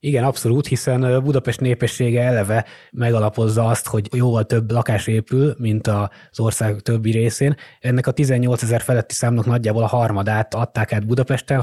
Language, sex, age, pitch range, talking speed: Hungarian, male, 20-39, 110-125 Hz, 150 wpm